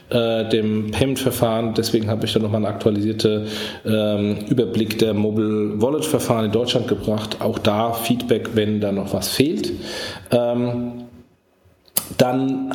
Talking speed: 125 wpm